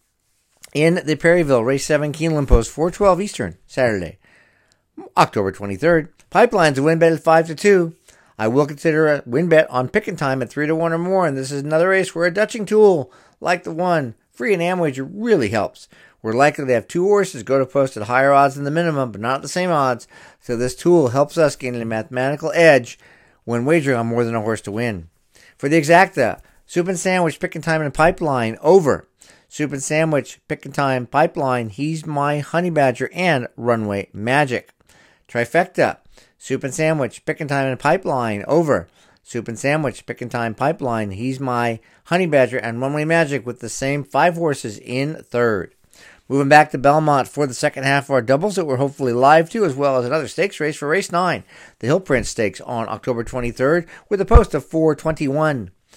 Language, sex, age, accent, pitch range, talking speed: English, male, 50-69, American, 125-165 Hz, 200 wpm